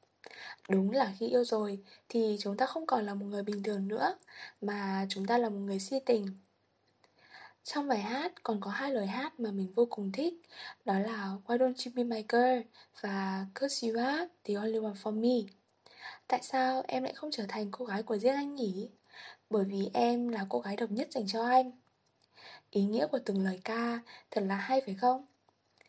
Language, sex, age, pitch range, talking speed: Vietnamese, female, 20-39, 205-255 Hz, 200 wpm